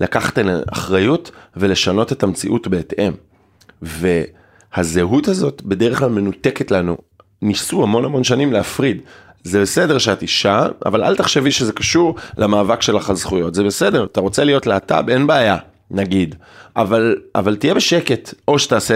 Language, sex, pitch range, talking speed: Hebrew, male, 95-125 Hz, 145 wpm